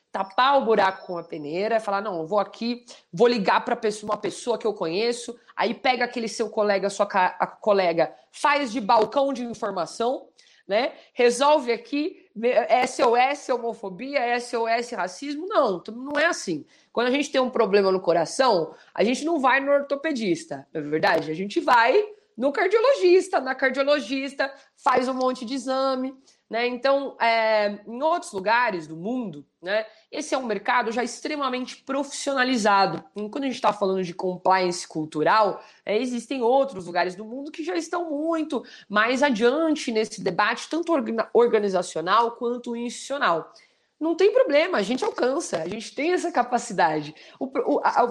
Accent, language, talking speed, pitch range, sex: Brazilian, Portuguese, 165 wpm, 210-290 Hz, female